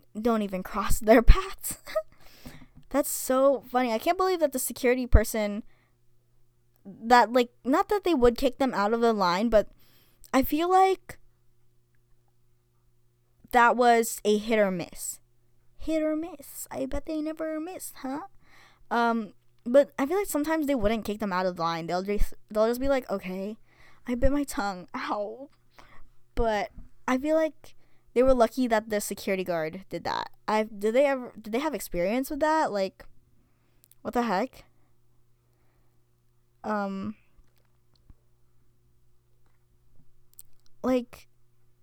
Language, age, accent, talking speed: English, 10-29, American, 145 wpm